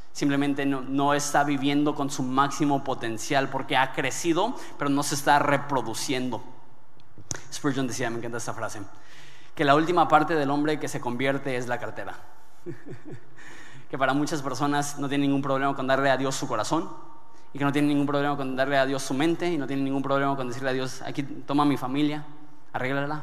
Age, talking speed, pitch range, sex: 20-39, 195 wpm, 130-145 Hz, male